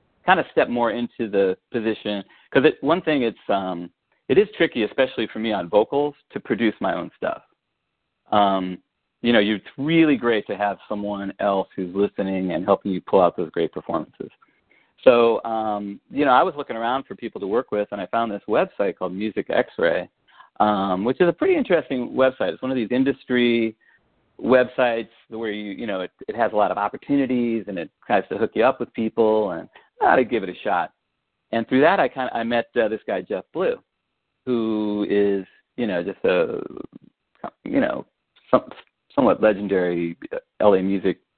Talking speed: 190 wpm